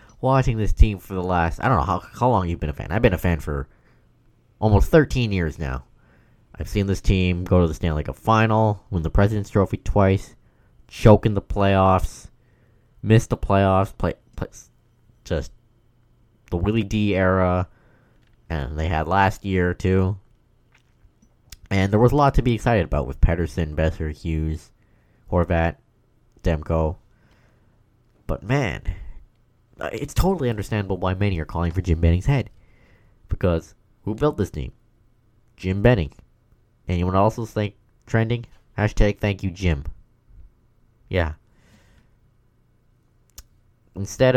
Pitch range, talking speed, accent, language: 85-115 Hz, 140 wpm, American, English